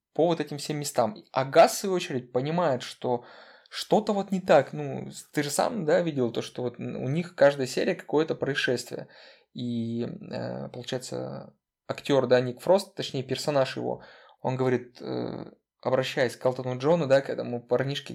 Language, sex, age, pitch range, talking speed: Russian, male, 20-39, 125-160 Hz, 165 wpm